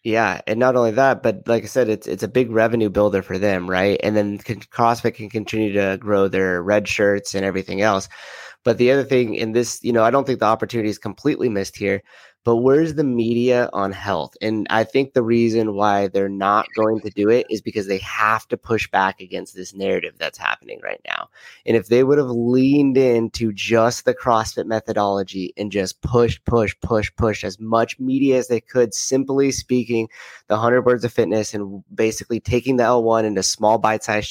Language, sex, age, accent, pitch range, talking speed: English, male, 30-49, American, 105-120 Hz, 205 wpm